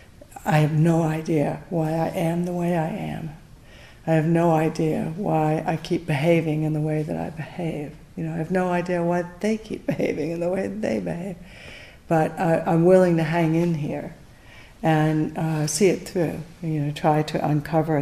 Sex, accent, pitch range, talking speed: female, American, 155-180 Hz, 195 wpm